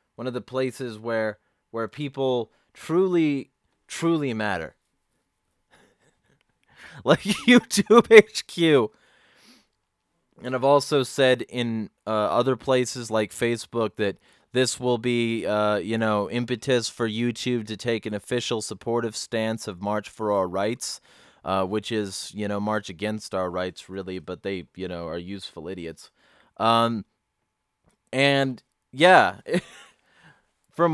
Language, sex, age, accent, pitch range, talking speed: English, male, 20-39, American, 105-130 Hz, 125 wpm